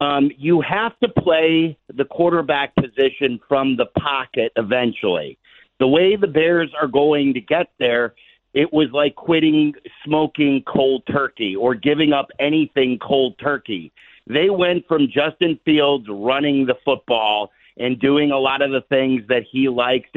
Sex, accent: male, American